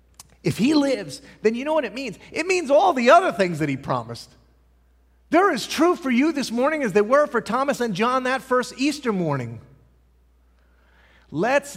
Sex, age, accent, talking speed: male, 40-59, American, 190 wpm